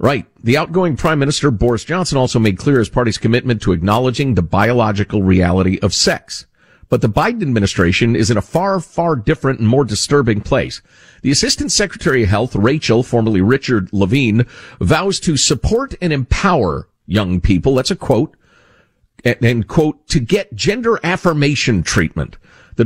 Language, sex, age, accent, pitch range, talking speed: English, male, 50-69, American, 105-145 Hz, 160 wpm